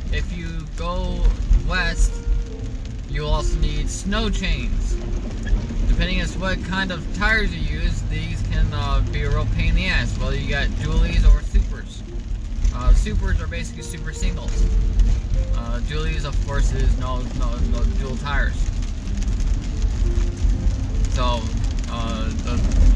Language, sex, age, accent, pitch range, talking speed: English, male, 20-39, American, 75-95 Hz, 135 wpm